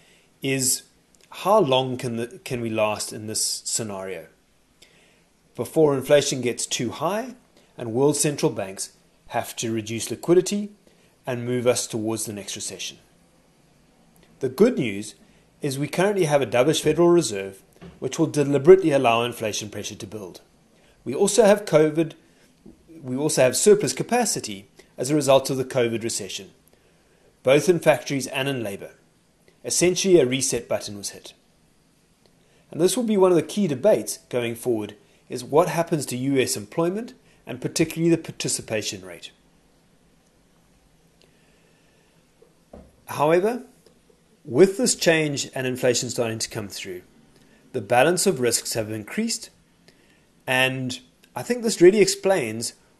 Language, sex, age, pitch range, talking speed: English, male, 30-49, 115-165 Hz, 140 wpm